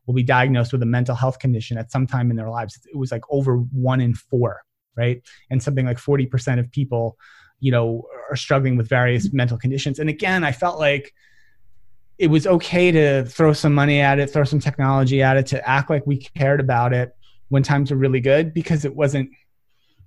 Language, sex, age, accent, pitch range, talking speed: English, male, 30-49, American, 120-145 Hz, 205 wpm